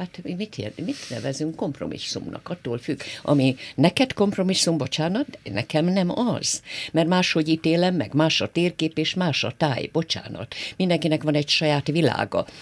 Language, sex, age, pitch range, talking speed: Hungarian, female, 50-69, 135-175 Hz, 150 wpm